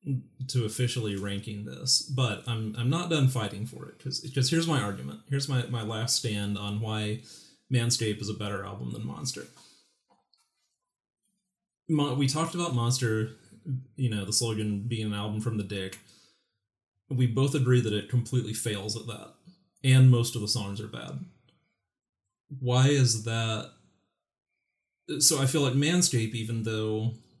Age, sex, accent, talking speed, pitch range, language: 30-49, male, American, 155 wpm, 105-130 Hz, English